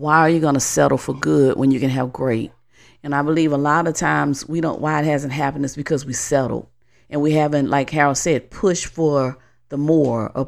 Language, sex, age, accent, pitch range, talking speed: English, female, 40-59, American, 135-175 Hz, 235 wpm